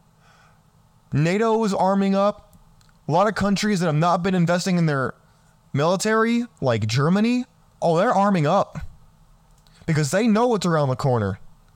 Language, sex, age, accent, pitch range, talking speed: English, male, 20-39, American, 140-180 Hz, 150 wpm